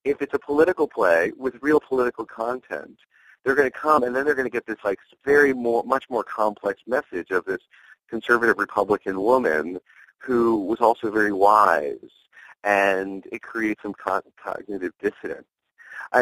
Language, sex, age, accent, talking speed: English, male, 40-59, American, 160 wpm